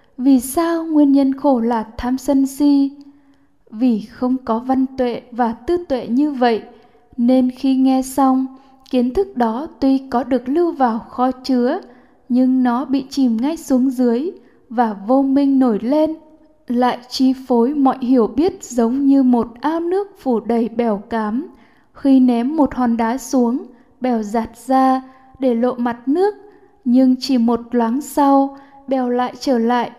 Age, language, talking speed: 10-29, Vietnamese, 165 wpm